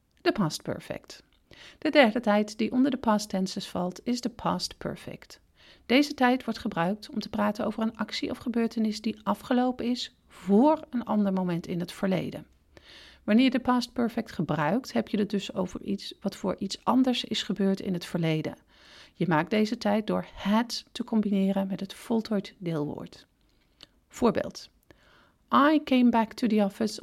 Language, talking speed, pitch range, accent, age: Dutch, 175 wpm, 195-245 Hz, Dutch, 40-59